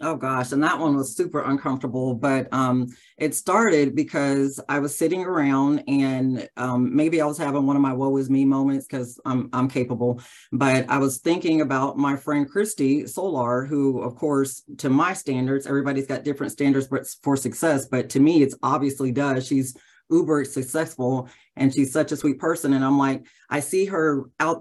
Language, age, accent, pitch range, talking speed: English, 30-49, American, 135-155 Hz, 190 wpm